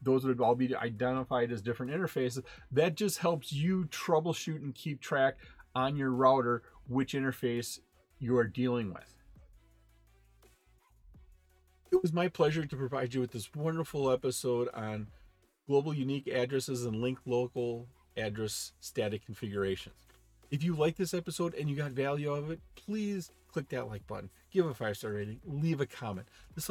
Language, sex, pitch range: English, male, 115-145 Hz